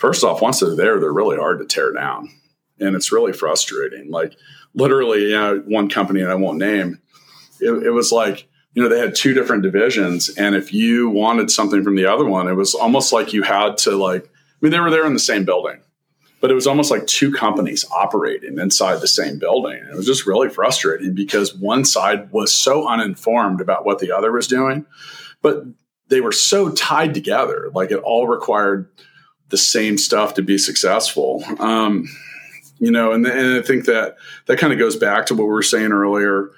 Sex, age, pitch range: male, 40-59, 100-145 Hz